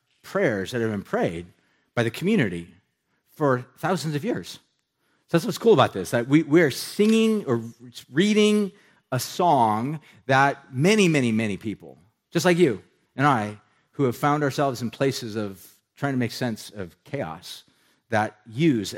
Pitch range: 105-140 Hz